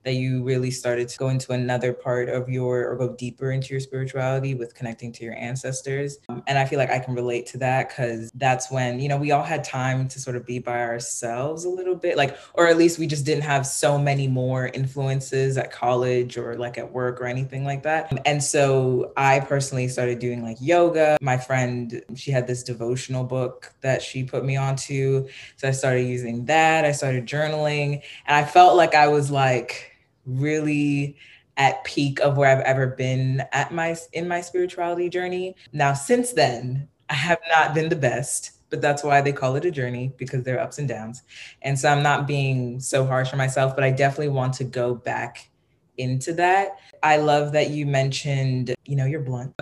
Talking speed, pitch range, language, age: 210 wpm, 125-145 Hz, English, 20-39